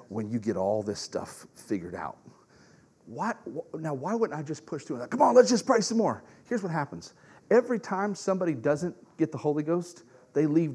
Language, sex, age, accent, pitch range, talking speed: English, male, 40-59, American, 140-190 Hz, 205 wpm